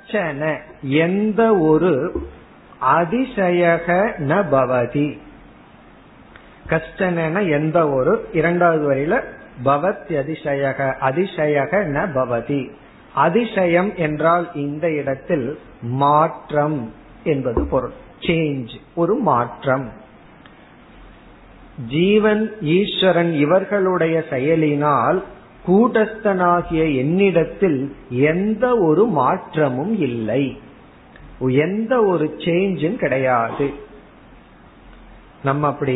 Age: 50-69